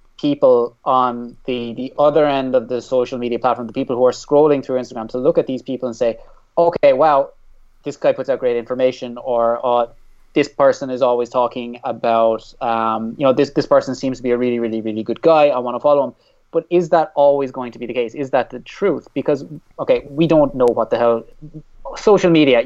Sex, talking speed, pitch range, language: male, 220 wpm, 120-150 Hz, English